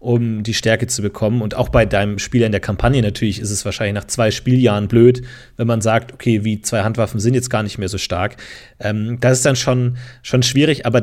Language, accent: German, German